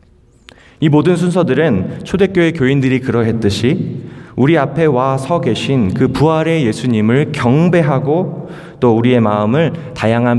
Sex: male